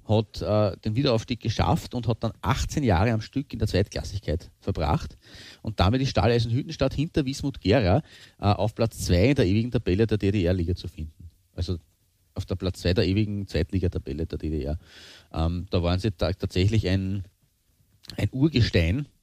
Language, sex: German, male